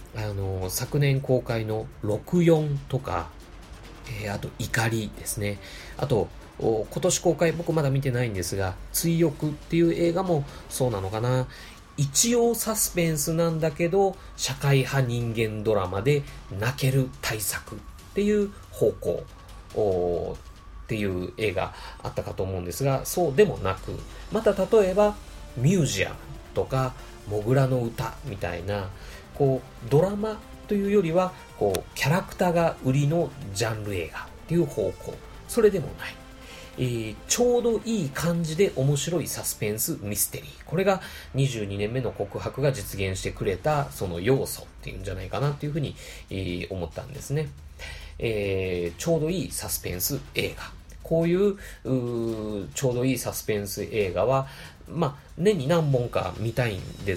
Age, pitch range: 30-49, 105-165 Hz